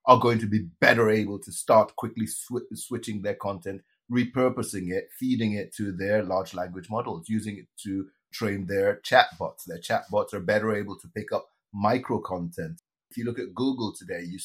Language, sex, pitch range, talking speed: English, male, 95-125 Hz, 185 wpm